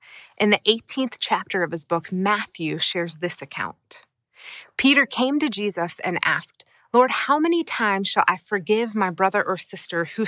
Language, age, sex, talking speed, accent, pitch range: English, 30-49, female, 170 wpm, American, 190-255 Hz